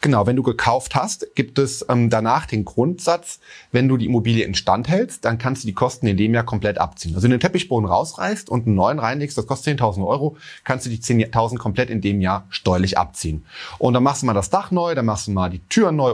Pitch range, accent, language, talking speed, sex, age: 100-135 Hz, German, German, 240 wpm, male, 30-49